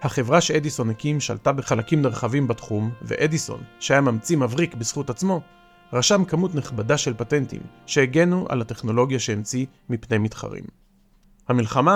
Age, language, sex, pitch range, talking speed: 40-59, Hebrew, male, 120-170 Hz, 125 wpm